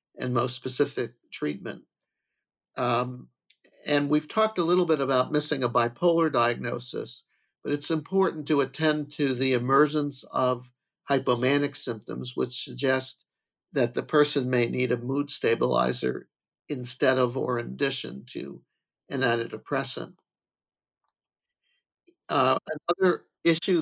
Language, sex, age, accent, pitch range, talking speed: English, male, 50-69, American, 125-155 Hz, 120 wpm